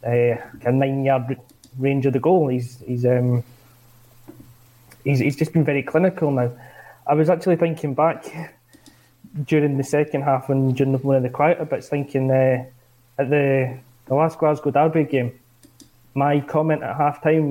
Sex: male